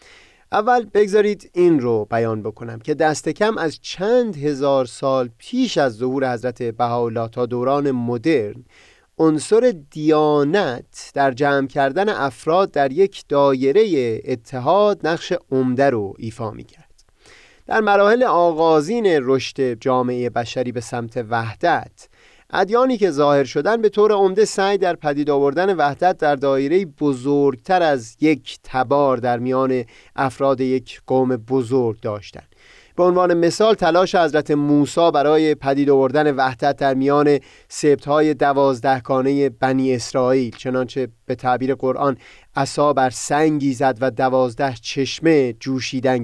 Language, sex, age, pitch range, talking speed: Persian, male, 30-49, 130-160 Hz, 130 wpm